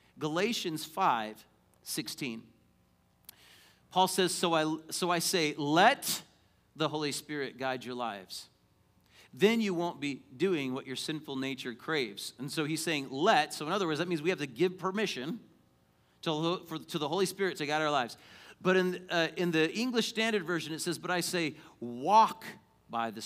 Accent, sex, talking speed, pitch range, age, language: American, male, 180 wpm, 130-180 Hz, 40-59, English